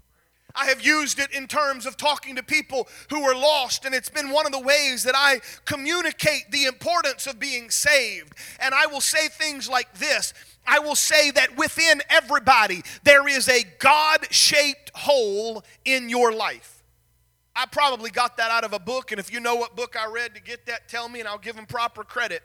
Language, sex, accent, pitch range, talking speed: English, male, American, 260-320 Hz, 205 wpm